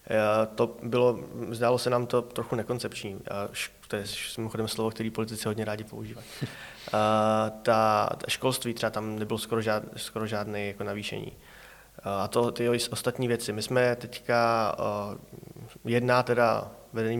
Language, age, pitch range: Czech, 20-39, 105-120 Hz